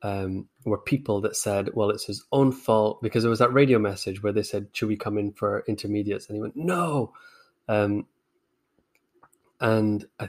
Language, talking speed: English, 185 wpm